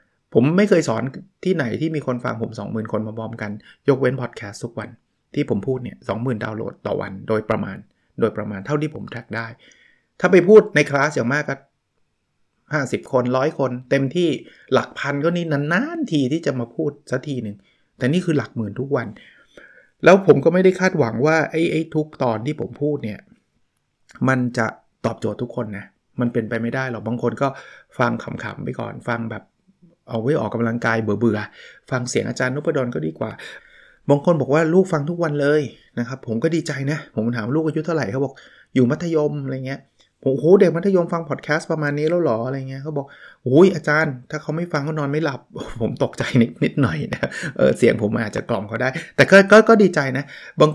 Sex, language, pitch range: male, Thai, 120-155 Hz